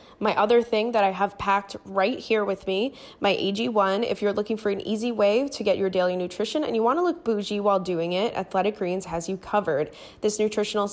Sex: female